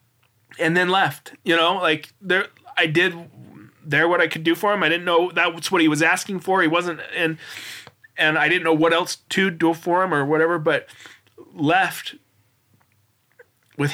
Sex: male